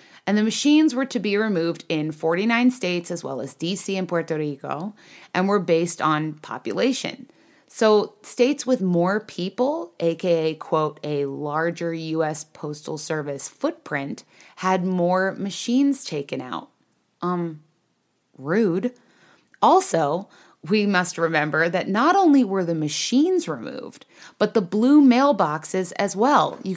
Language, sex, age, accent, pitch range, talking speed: English, female, 30-49, American, 170-255 Hz, 135 wpm